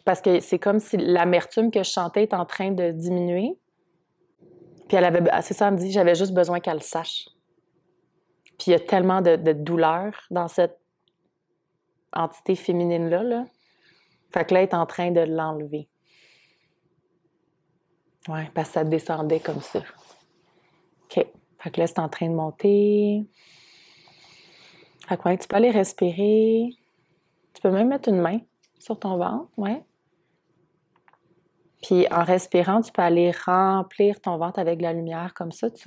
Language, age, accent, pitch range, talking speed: French, 30-49, Canadian, 170-205 Hz, 165 wpm